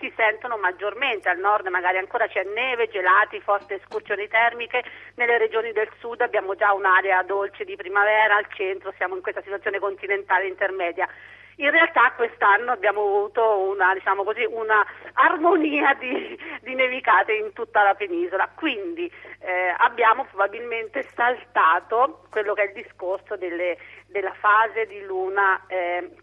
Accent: native